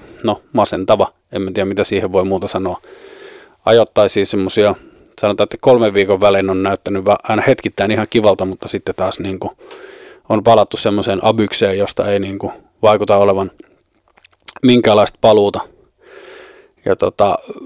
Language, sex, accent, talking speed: Finnish, male, native, 140 wpm